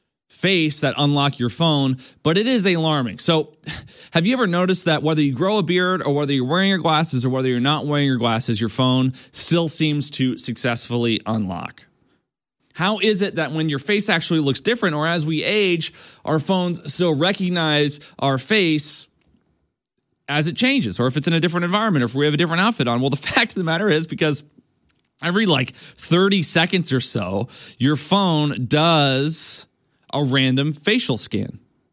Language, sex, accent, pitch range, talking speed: English, male, American, 135-180 Hz, 185 wpm